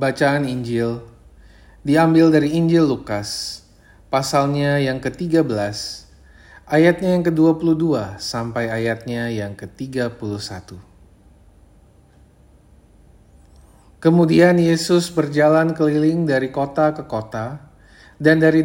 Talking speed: 85 wpm